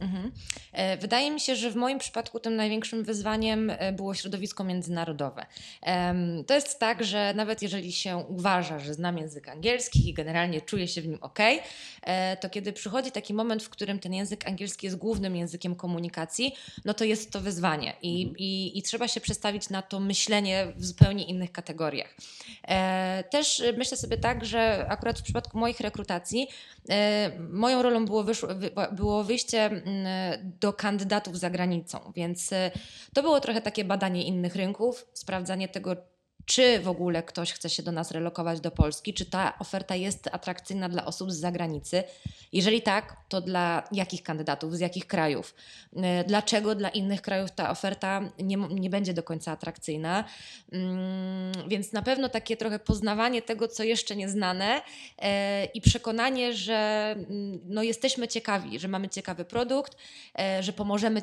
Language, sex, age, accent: Polish, female, 20-39, native